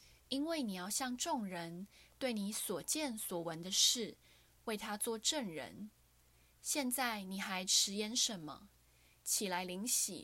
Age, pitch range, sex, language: 10-29, 180-245 Hz, female, Chinese